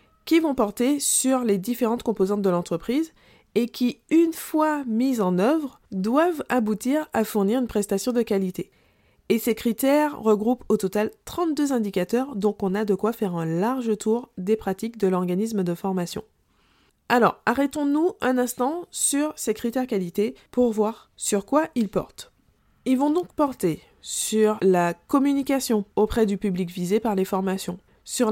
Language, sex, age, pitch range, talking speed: French, female, 20-39, 195-245 Hz, 160 wpm